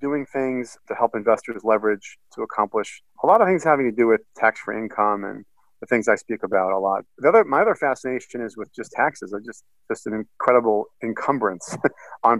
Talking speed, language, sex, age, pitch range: 205 wpm, English, male, 40-59, 110-130 Hz